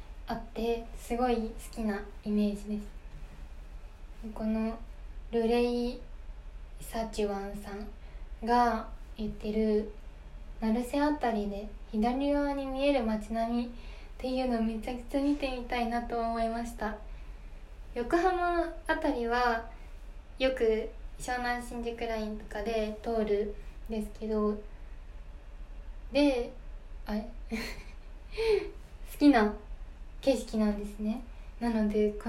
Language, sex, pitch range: Japanese, female, 210-245 Hz